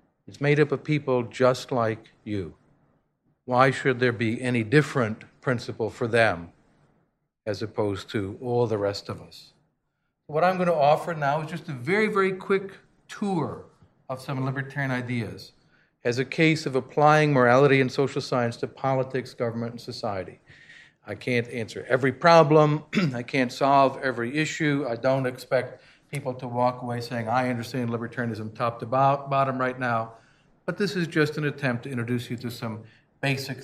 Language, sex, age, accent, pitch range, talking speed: English, male, 50-69, American, 120-150 Hz, 170 wpm